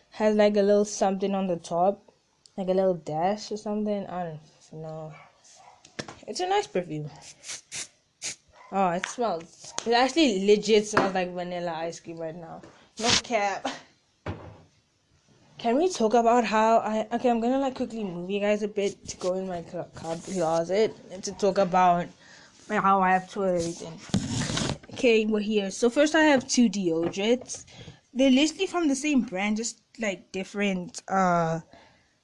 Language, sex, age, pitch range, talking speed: English, female, 10-29, 180-230 Hz, 155 wpm